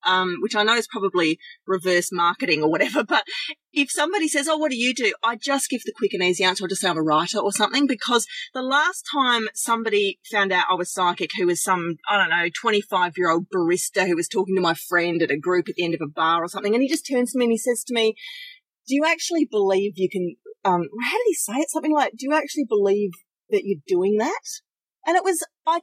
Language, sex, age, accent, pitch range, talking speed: English, female, 30-49, Australian, 195-295 Hz, 245 wpm